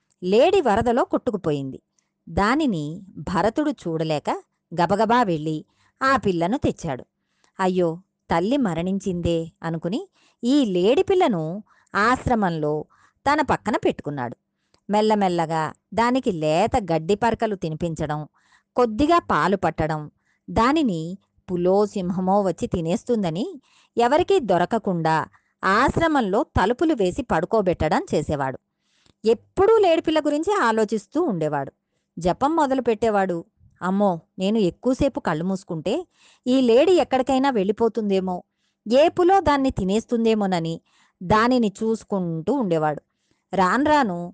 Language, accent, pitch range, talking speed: Telugu, native, 175-260 Hz, 90 wpm